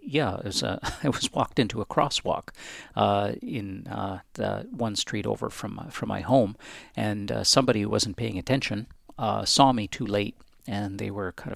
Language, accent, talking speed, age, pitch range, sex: English, American, 195 wpm, 50-69, 100-120 Hz, male